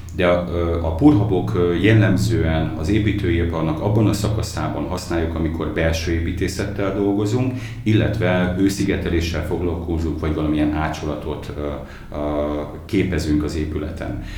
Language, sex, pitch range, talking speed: Hungarian, male, 80-105 Hz, 110 wpm